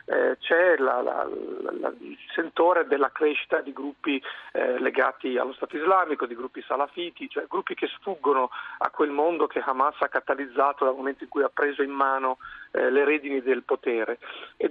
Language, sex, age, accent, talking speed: Italian, male, 40-59, native, 185 wpm